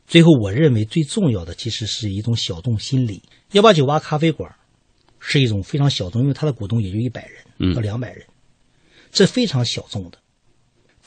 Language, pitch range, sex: Chinese, 105-160 Hz, male